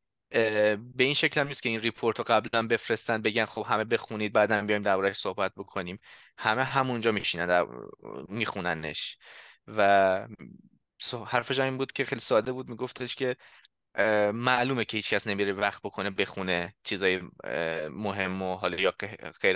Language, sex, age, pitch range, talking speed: Persian, male, 20-39, 110-135 Hz, 145 wpm